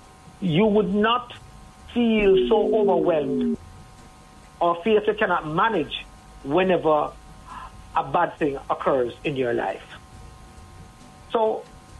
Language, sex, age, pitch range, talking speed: English, male, 60-79, 135-195 Hz, 100 wpm